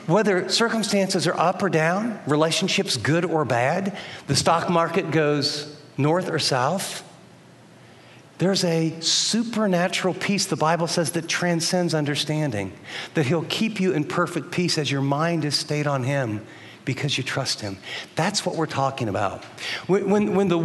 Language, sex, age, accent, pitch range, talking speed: English, male, 50-69, American, 160-200 Hz, 155 wpm